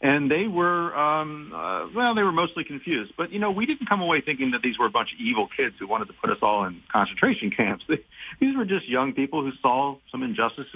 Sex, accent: male, American